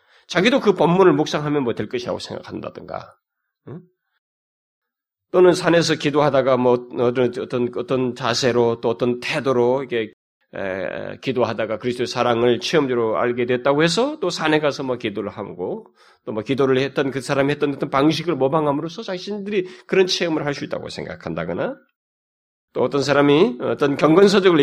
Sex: male